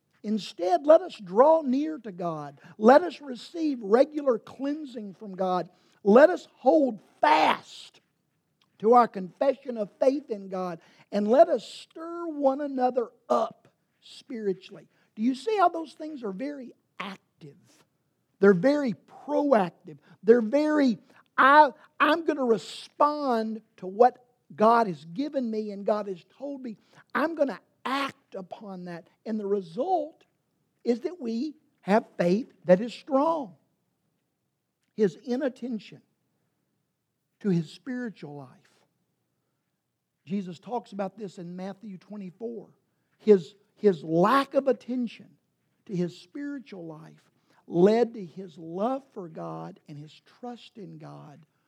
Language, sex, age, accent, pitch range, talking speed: English, male, 50-69, American, 180-265 Hz, 130 wpm